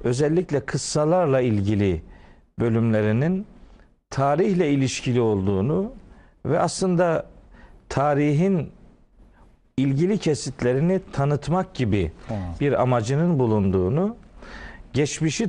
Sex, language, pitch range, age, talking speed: male, Turkish, 110-150 Hz, 50-69, 70 wpm